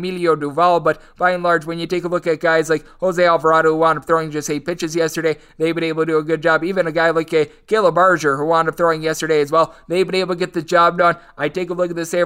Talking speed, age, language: 300 wpm, 20-39, English